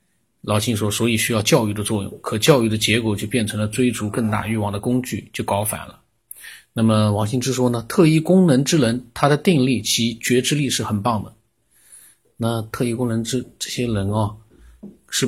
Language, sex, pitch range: Chinese, male, 110-130 Hz